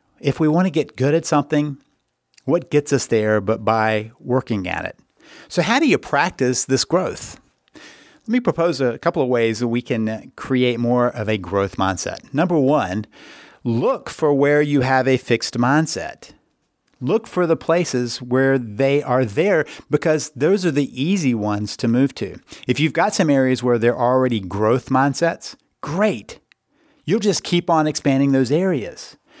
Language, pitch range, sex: English, 120-145 Hz, male